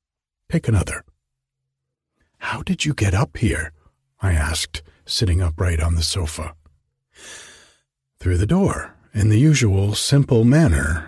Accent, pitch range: American, 85-130 Hz